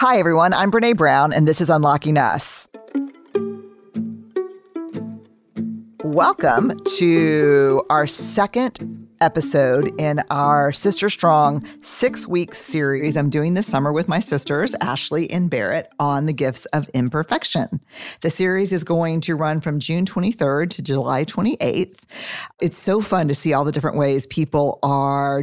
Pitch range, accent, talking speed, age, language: 145-180 Hz, American, 140 wpm, 40-59, English